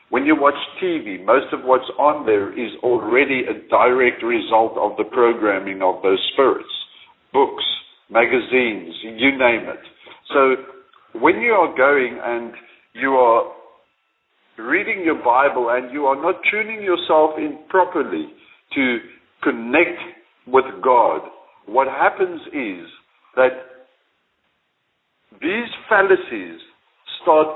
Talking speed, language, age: 120 wpm, English, 60-79